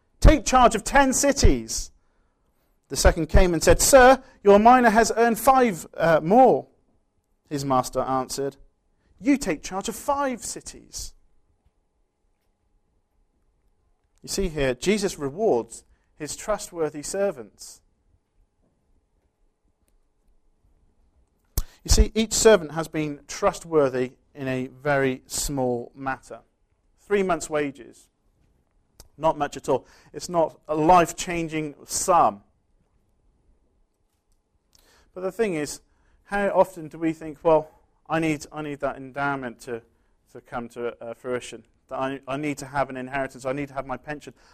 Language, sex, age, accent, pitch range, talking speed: English, male, 40-59, British, 105-165 Hz, 130 wpm